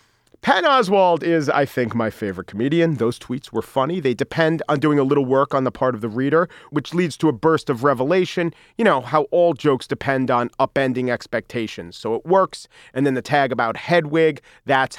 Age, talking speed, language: 40-59, 205 wpm, English